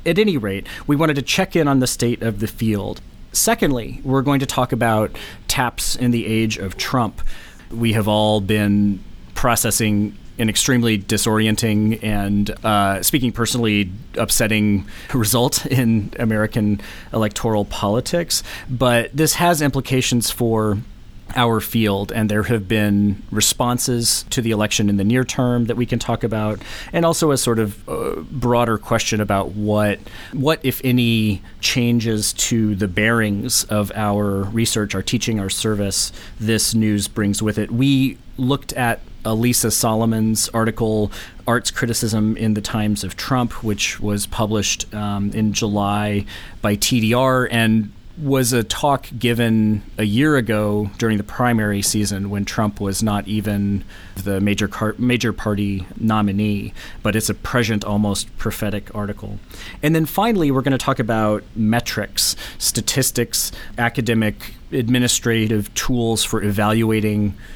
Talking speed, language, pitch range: 145 wpm, English, 105-120 Hz